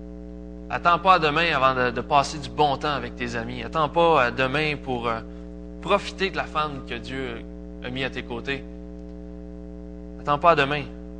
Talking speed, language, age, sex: 175 wpm, French, 20-39, male